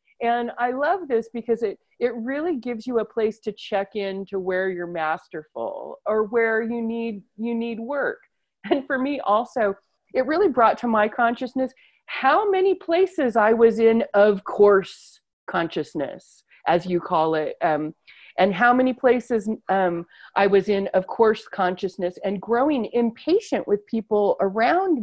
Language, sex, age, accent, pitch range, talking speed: English, female, 40-59, American, 190-245 Hz, 160 wpm